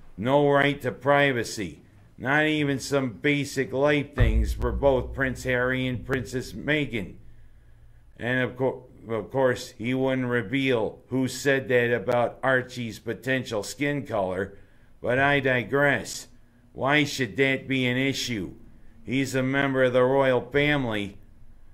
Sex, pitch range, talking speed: male, 115-135 Hz, 135 wpm